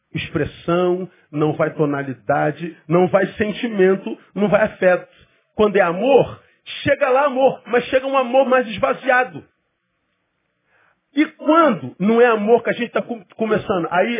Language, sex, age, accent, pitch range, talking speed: Portuguese, male, 40-59, Brazilian, 180-265 Hz, 140 wpm